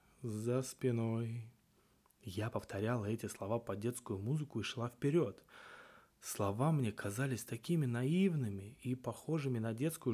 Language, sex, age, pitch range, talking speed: Russian, male, 20-39, 105-135 Hz, 125 wpm